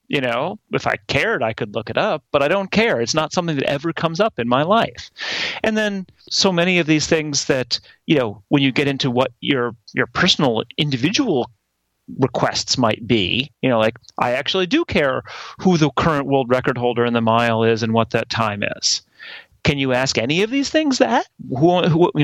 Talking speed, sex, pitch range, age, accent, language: 215 wpm, male, 135-190 Hz, 30-49, American, English